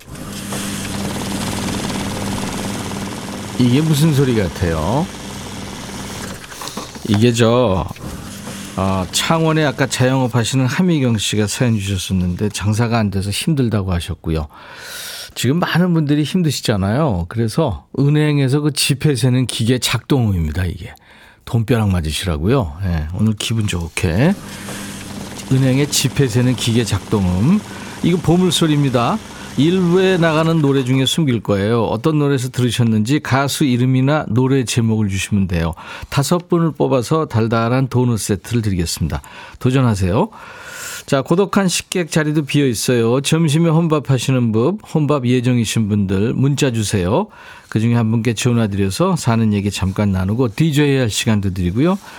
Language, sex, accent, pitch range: Korean, male, native, 100-150 Hz